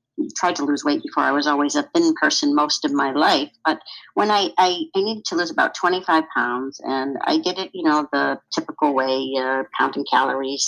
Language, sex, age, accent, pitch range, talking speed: English, female, 60-79, American, 145-205 Hz, 215 wpm